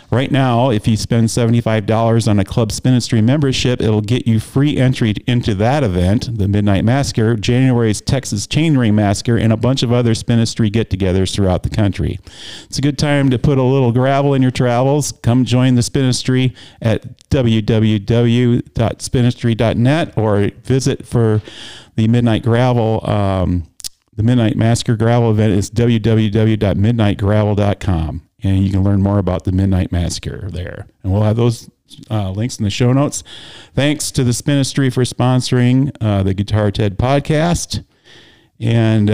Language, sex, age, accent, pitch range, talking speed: English, male, 40-59, American, 105-125 Hz, 155 wpm